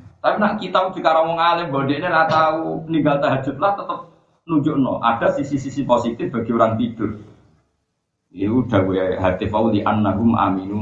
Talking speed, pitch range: 155 wpm, 100-145 Hz